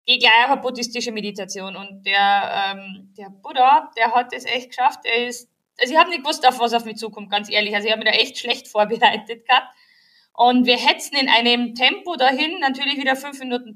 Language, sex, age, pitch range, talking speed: German, female, 20-39, 240-345 Hz, 215 wpm